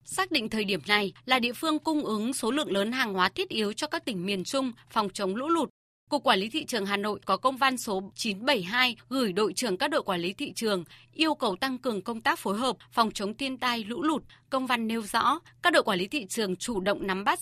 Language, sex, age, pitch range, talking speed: Vietnamese, female, 20-39, 205-280 Hz, 260 wpm